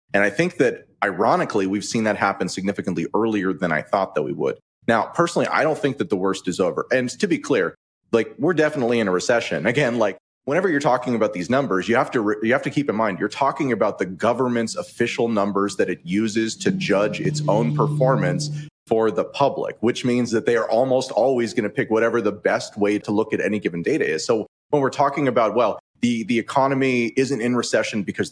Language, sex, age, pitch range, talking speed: English, male, 30-49, 105-130 Hz, 225 wpm